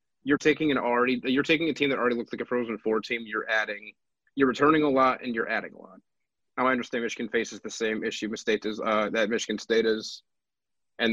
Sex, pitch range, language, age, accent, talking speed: male, 110-125 Hz, English, 20-39, American, 235 wpm